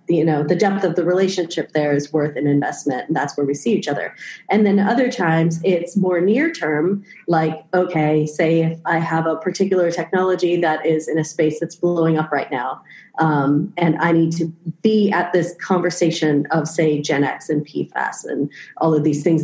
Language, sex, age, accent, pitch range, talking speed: English, female, 30-49, American, 160-185 Hz, 205 wpm